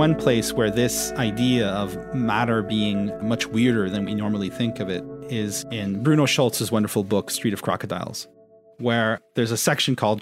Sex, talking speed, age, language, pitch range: male, 175 wpm, 30-49, English, 105-135 Hz